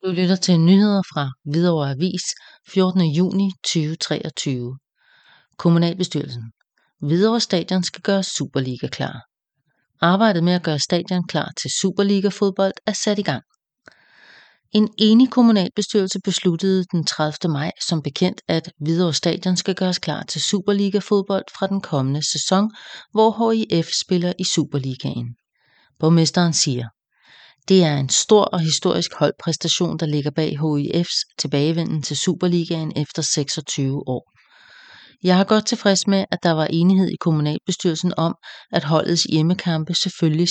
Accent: Danish